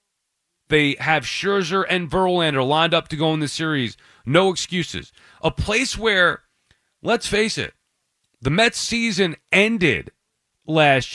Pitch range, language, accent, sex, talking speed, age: 155-215 Hz, English, American, male, 135 wpm, 40-59